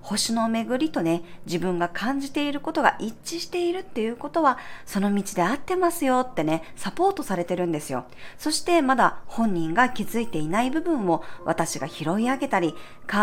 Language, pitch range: Japanese, 170-250 Hz